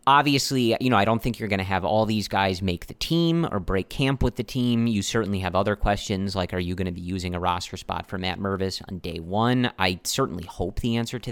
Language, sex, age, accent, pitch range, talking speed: English, male, 30-49, American, 95-120 Hz, 260 wpm